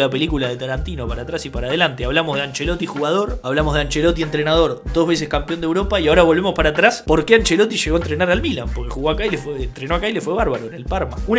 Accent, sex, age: Argentinian, male, 20-39